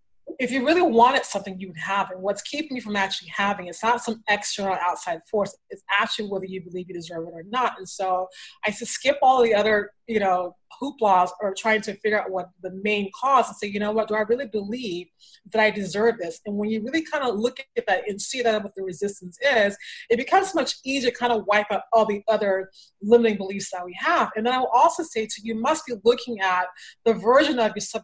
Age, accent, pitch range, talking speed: 20-39, American, 195-240 Hz, 245 wpm